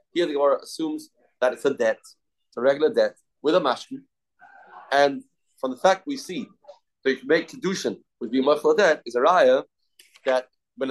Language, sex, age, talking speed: English, male, 30-49, 185 wpm